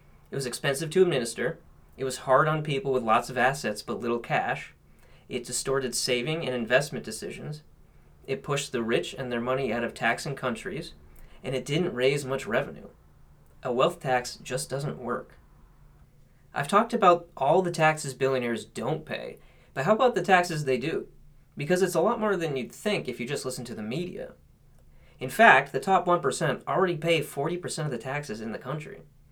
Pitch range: 125-170 Hz